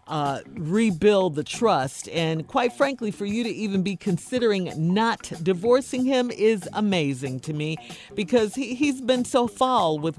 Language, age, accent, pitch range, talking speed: English, 50-69, American, 170-240 Hz, 155 wpm